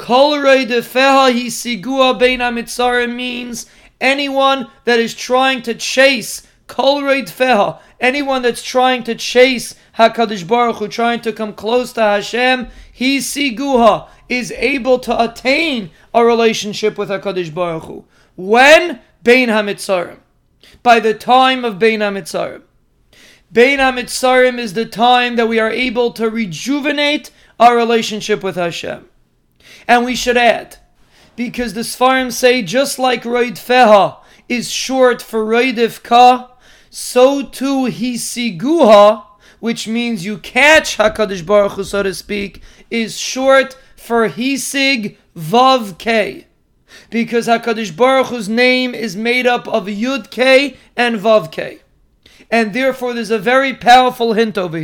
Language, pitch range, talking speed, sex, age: English, 225-255 Hz, 130 wpm, male, 30-49